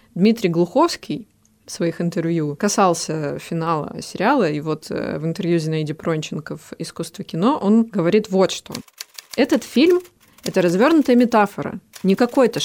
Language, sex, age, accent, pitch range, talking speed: Russian, female, 20-39, native, 165-220 Hz, 135 wpm